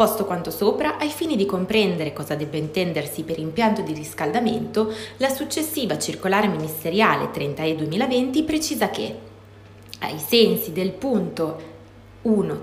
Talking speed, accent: 135 wpm, native